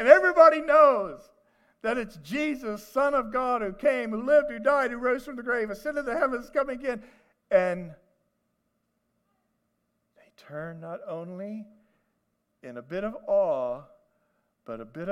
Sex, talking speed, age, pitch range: male, 165 wpm, 50-69, 165-275 Hz